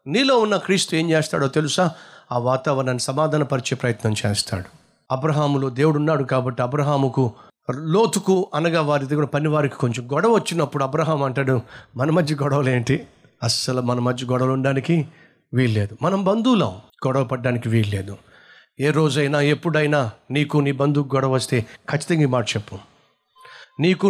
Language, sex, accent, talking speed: Telugu, male, native, 135 wpm